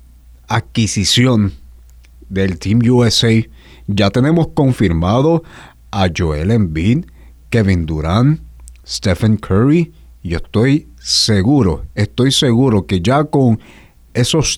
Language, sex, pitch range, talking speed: Spanish, male, 90-125 Hz, 95 wpm